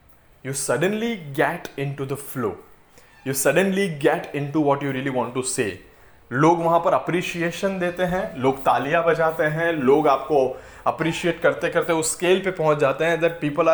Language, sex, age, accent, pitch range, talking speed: Hindi, male, 20-39, native, 135-170 Hz, 170 wpm